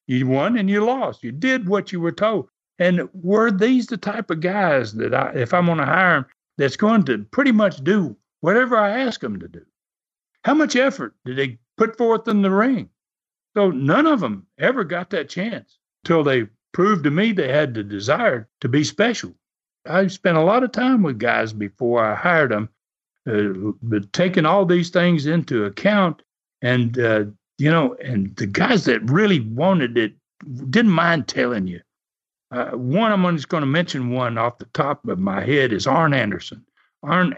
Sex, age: male, 60-79